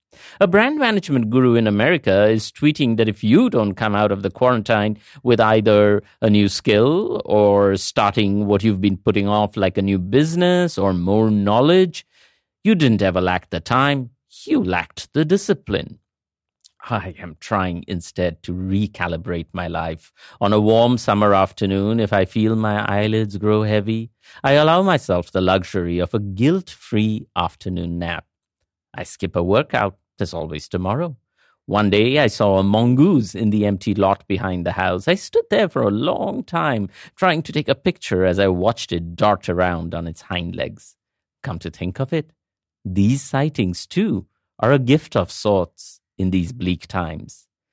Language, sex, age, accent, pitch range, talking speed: English, male, 50-69, Indian, 95-135 Hz, 170 wpm